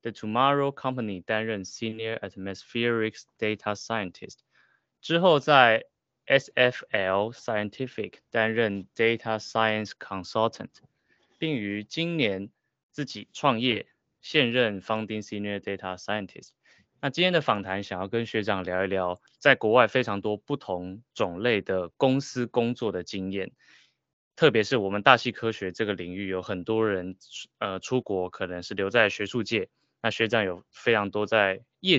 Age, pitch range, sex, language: 20-39, 95-120 Hz, male, Chinese